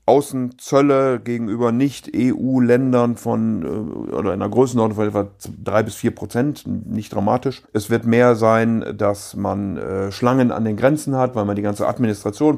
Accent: German